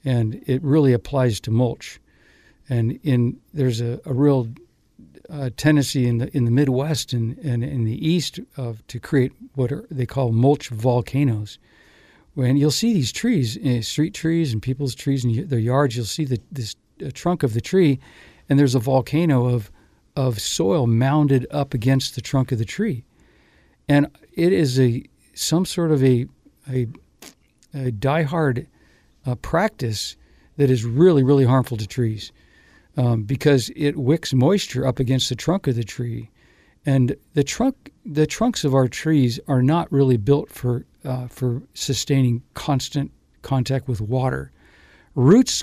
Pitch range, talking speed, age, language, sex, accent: 120-145 Hz, 165 wpm, 60-79, English, male, American